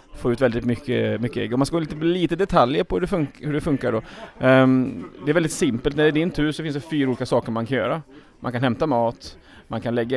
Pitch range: 115-145 Hz